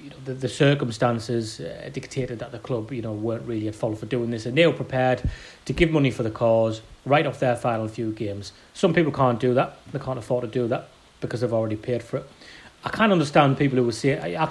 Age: 30-49